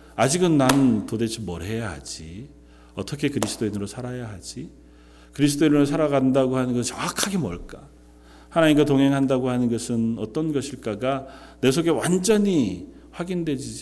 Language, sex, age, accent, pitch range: Korean, male, 40-59, native, 90-130 Hz